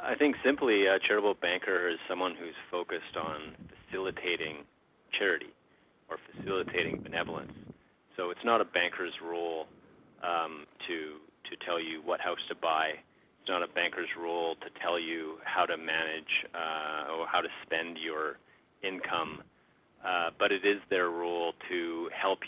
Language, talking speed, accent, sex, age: English, 150 wpm, American, male, 30-49